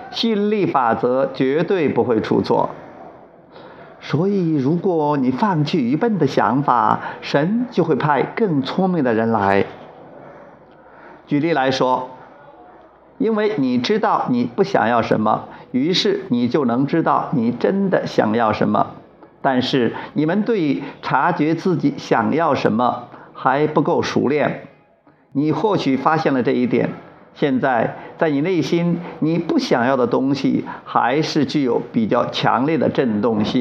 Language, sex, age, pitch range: Chinese, male, 50-69, 140-215 Hz